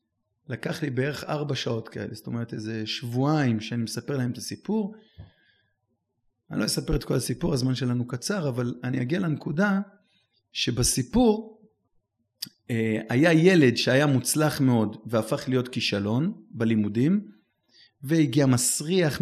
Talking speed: 125 wpm